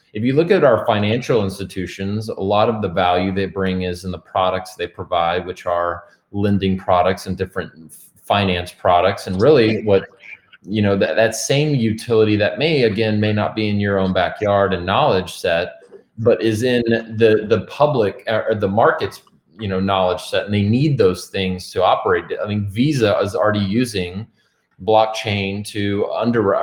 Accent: American